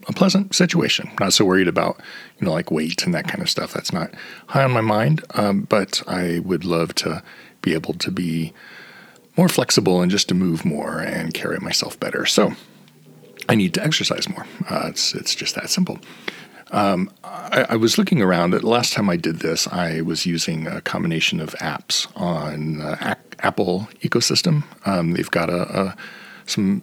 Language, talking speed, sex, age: English, 190 wpm, male, 40-59